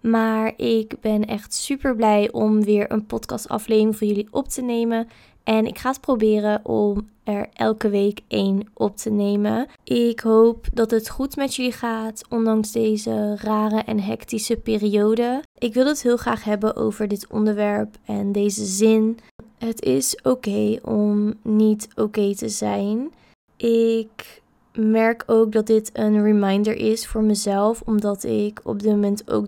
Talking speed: 165 wpm